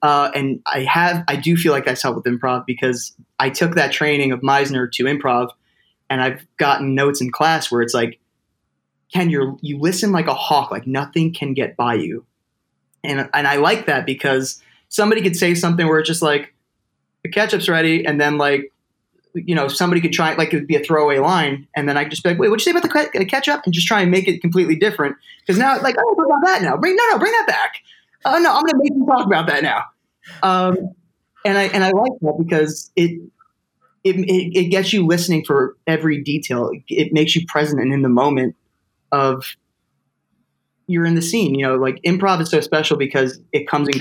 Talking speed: 225 wpm